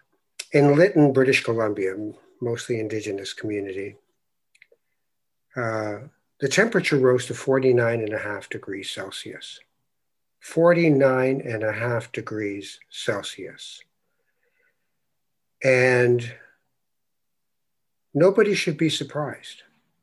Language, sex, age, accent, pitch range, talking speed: English, male, 60-79, American, 115-145 Hz, 85 wpm